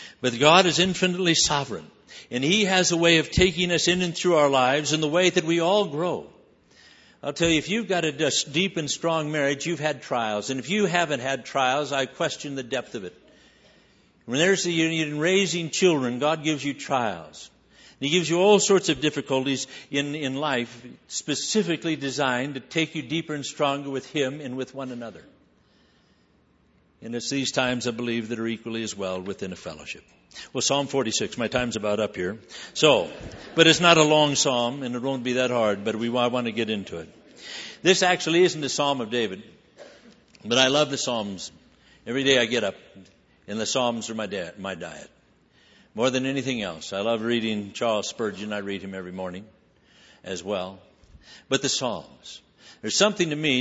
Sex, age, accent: male, 60-79, American